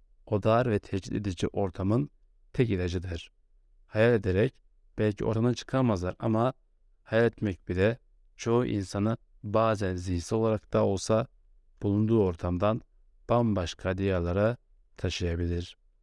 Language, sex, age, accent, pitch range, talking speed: Turkish, male, 60-79, native, 90-110 Hz, 110 wpm